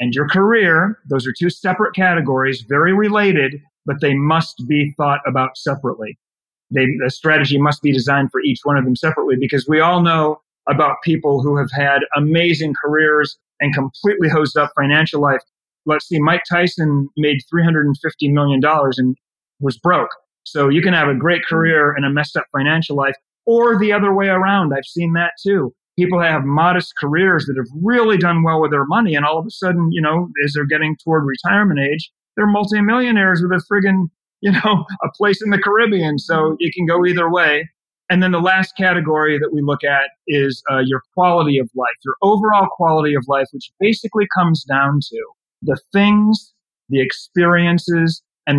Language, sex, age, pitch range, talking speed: English, male, 40-59, 140-180 Hz, 185 wpm